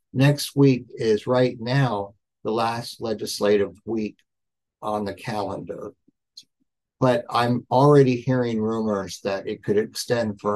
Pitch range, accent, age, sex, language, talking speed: 105-125 Hz, American, 60-79, male, English, 125 wpm